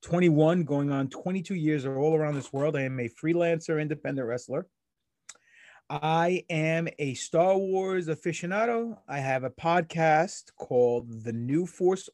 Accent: American